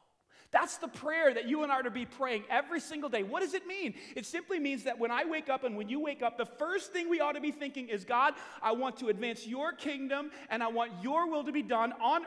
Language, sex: English, male